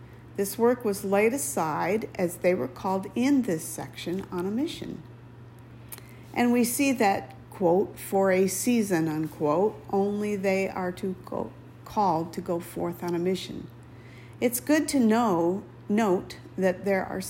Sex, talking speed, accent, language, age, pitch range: female, 155 wpm, American, English, 50-69, 165-210 Hz